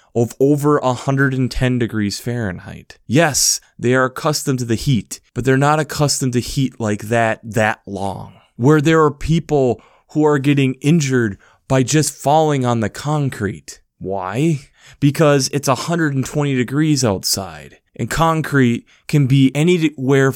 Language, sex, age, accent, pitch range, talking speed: English, male, 20-39, American, 120-155 Hz, 140 wpm